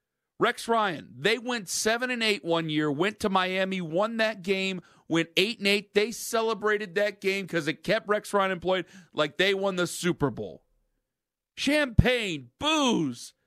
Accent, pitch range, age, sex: American, 160-225 Hz, 40-59, male